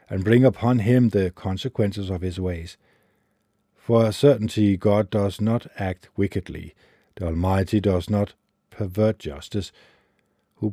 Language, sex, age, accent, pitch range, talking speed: English, male, 50-69, Danish, 95-115 Hz, 135 wpm